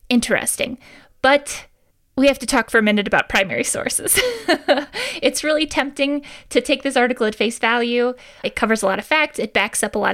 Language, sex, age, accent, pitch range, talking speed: English, female, 20-39, American, 220-290 Hz, 195 wpm